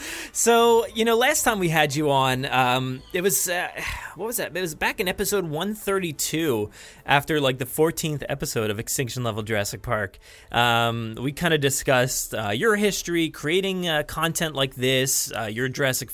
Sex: male